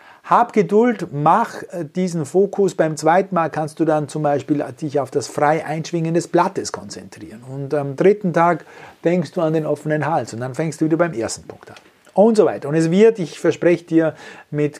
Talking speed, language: 205 wpm, German